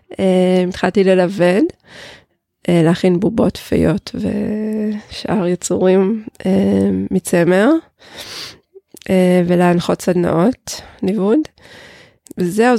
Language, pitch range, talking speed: Hebrew, 175-225 Hz, 75 wpm